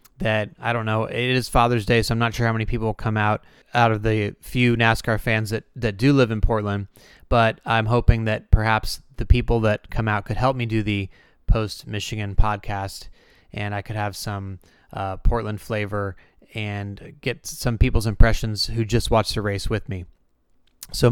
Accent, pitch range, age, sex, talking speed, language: American, 105-120 Hz, 20-39, male, 190 wpm, English